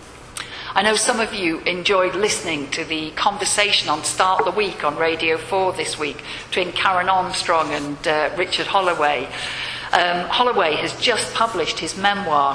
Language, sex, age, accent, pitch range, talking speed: English, female, 50-69, British, 150-210 Hz, 160 wpm